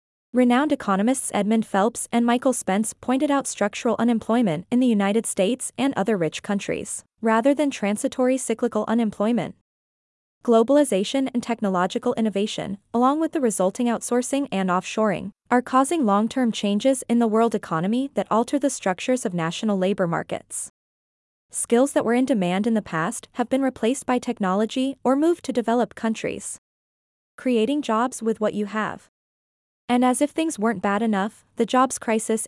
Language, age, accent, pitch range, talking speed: English, 20-39, American, 205-250 Hz, 155 wpm